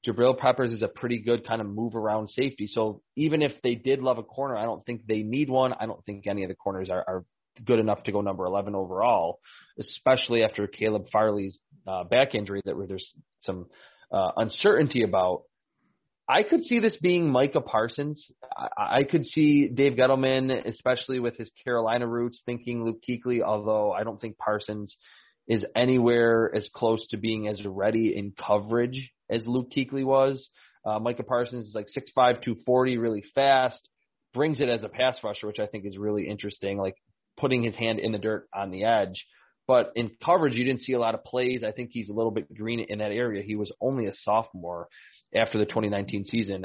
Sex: male